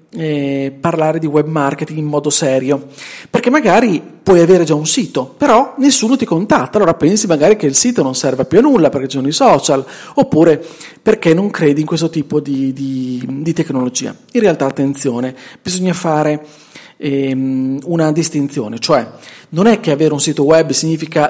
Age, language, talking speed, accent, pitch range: 40-59, Italian, 180 wpm, native, 145-200 Hz